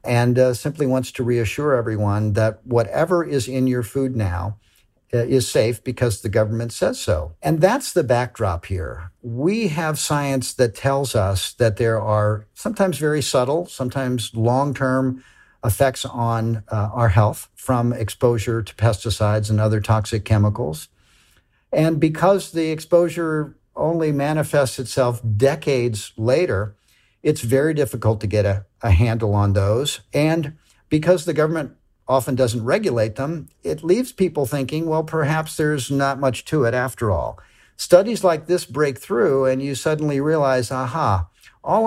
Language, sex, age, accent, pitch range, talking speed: English, male, 50-69, American, 110-155 Hz, 150 wpm